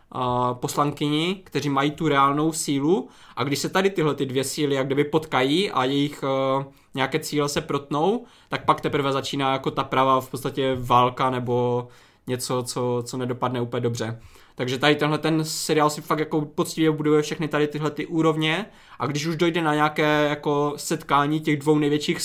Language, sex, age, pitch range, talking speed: Czech, male, 20-39, 135-155 Hz, 185 wpm